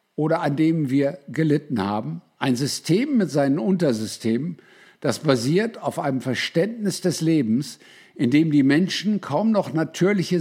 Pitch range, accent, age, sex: 135-185 Hz, German, 60-79, male